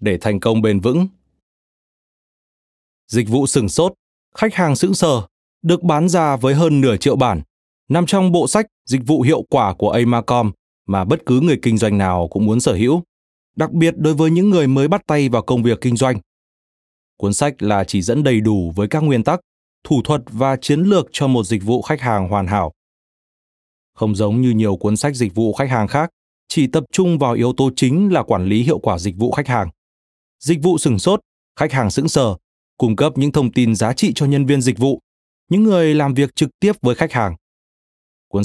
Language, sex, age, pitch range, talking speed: Vietnamese, male, 20-39, 105-155 Hz, 215 wpm